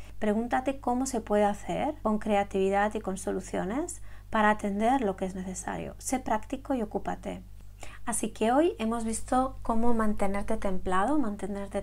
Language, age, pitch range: Spanish, 30-49, 195-225 Hz